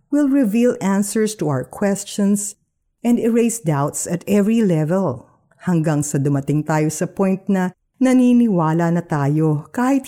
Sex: female